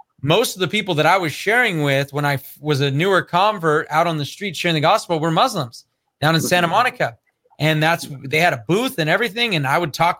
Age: 30-49